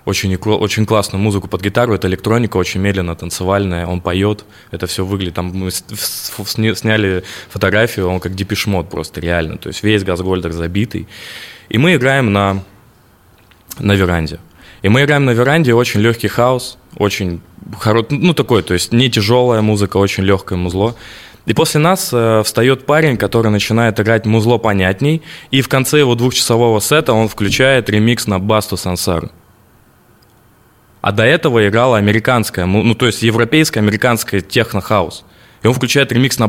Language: Russian